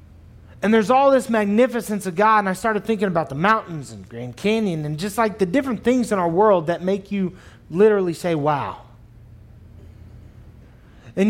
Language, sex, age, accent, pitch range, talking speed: English, male, 30-49, American, 115-190 Hz, 175 wpm